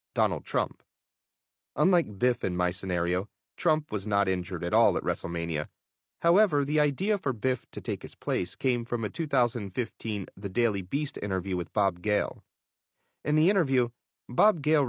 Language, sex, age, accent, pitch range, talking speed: English, male, 30-49, American, 100-140 Hz, 160 wpm